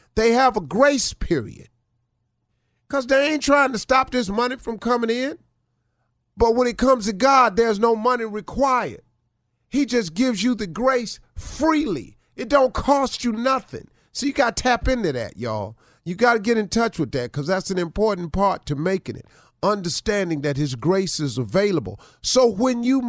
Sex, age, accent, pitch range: male, 40-59, American, 160-250 Hz